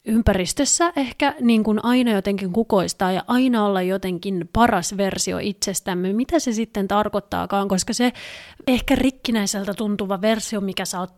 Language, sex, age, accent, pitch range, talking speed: Finnish, female, 30-49, native, 190-220 Hz, 145 wpm